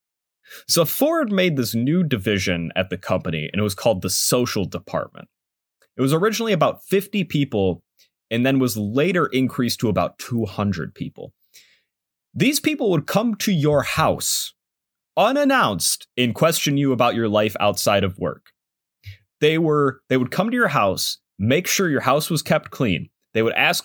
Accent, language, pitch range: American, English, 100-145 Hz